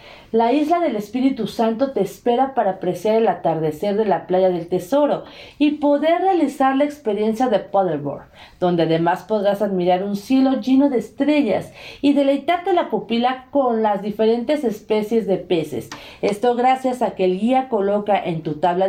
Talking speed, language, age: 165 wpm, Spanish, 40-59